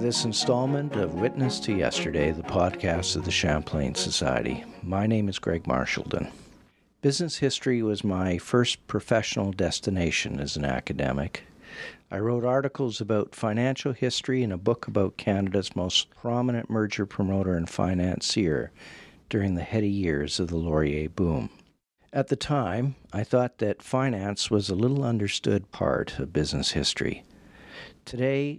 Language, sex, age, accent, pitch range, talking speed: English, male, 50-69, American, 90-125 Hz, 145 wpm